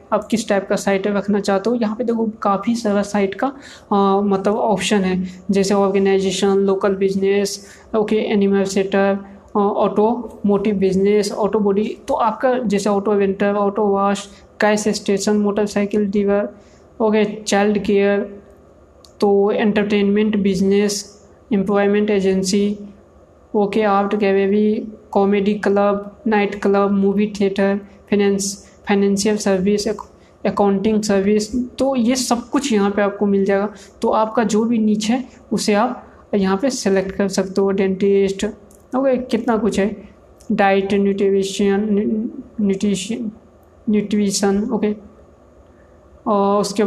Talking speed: 125 wpm